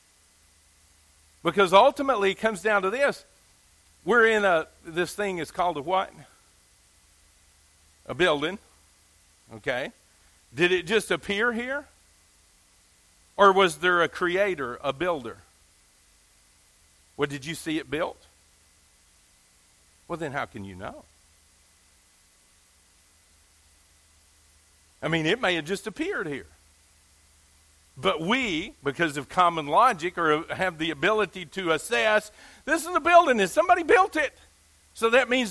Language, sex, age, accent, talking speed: English, male, 50-69, American, 125 wpm